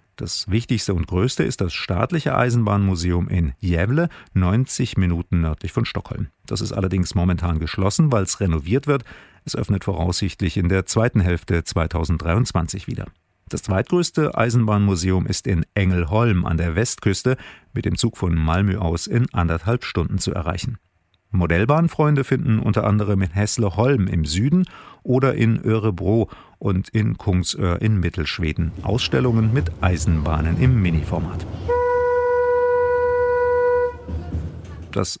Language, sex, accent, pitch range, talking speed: German, male, German, 90-120 Hz, 130 wpm